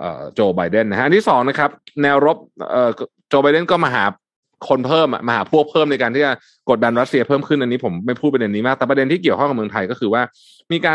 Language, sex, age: Thai, male, 20-39